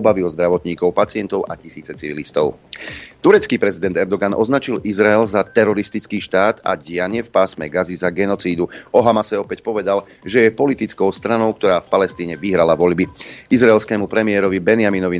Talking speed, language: 150 wpm, Slovak